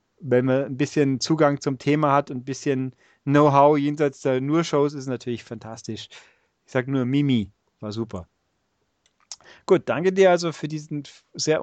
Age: 30-49